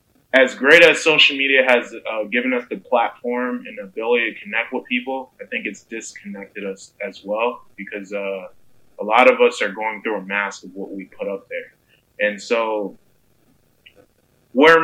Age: 20-39